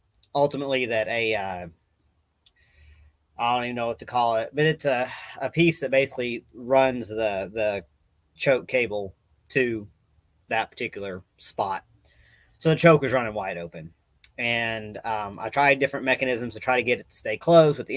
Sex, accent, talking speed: male, American, 170 wpm